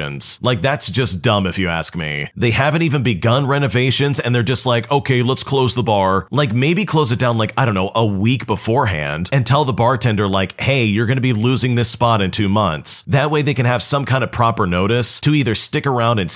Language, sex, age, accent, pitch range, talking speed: English, male, 40-59, American, 100-135 Hz, 235 wpm